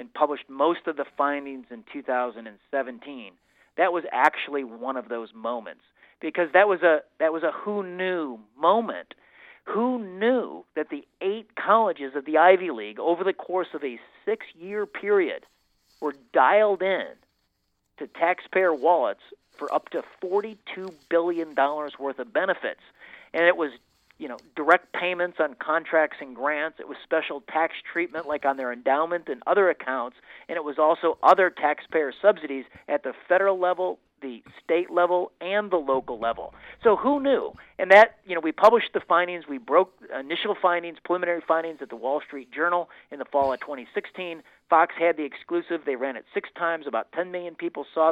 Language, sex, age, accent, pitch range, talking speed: English, male, 50-69, American, 145-185 Hz, 175 wpm